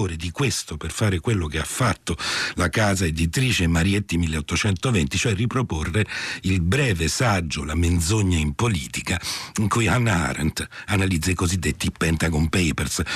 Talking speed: 140 wpm